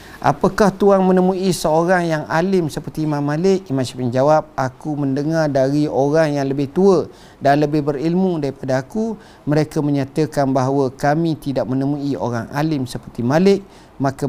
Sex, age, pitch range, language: male, 50-69, 130-175 Hz, Malay